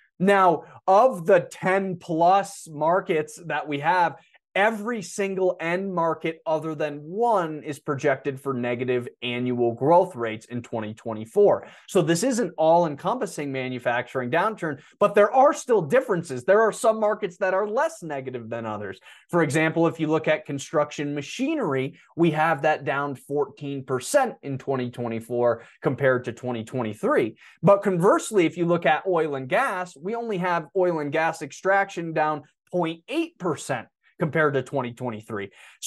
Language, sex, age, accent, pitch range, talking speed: English, male, 20-39, American, 135-185 Hz, 140 wpm